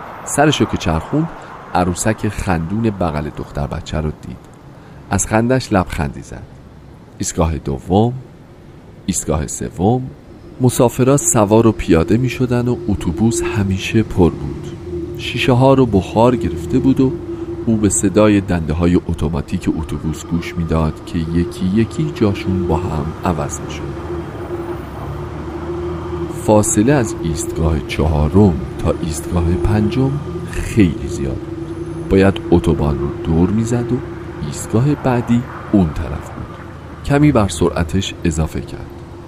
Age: 40-59